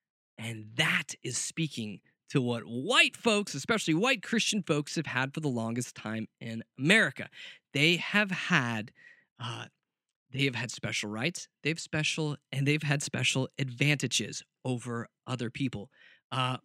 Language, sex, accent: English, male, American